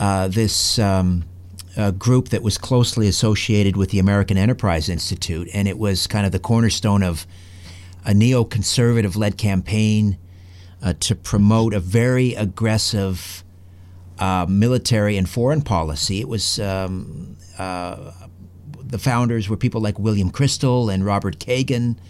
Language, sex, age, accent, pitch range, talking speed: English, male, 50-69, American, 95-120 Hz, 140 wpm